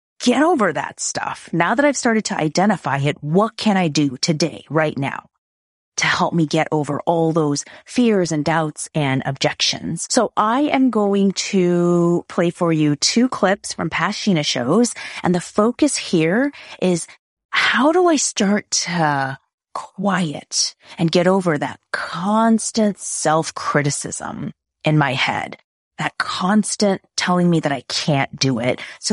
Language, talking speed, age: English, 150 wpm, 30-49